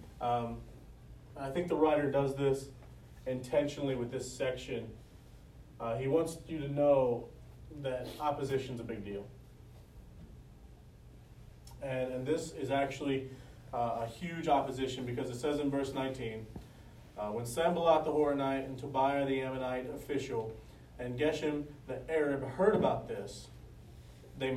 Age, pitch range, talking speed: 30-49, 115-145 Hz, 135 wpm